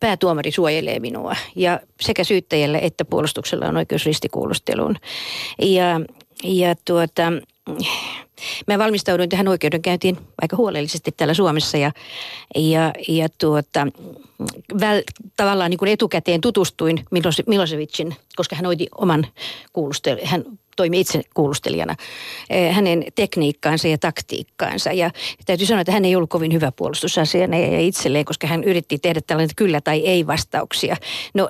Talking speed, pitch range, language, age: 110 wpm, 160-195 Hz, Finnish, 50-69